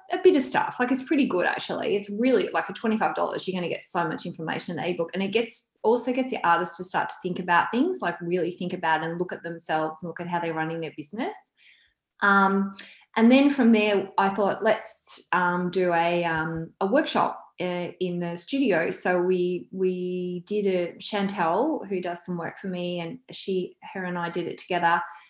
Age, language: 20-39, English